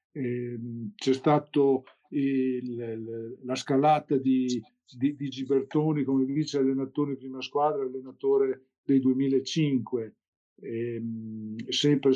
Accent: native